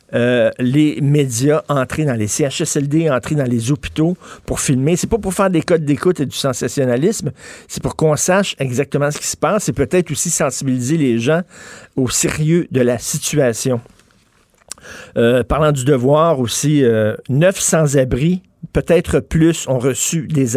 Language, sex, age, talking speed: French, male, 50-69, 165 wpm